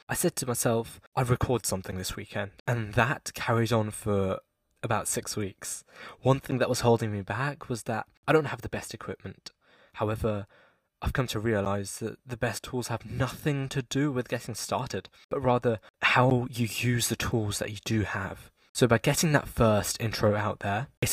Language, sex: English, male